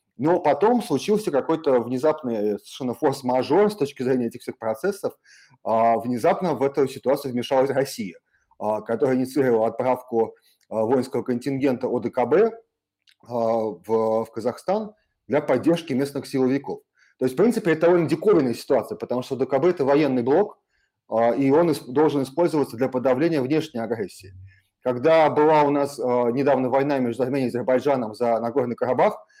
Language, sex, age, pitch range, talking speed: Russian, male, 30-49, 125-155 Hz, 135 wpm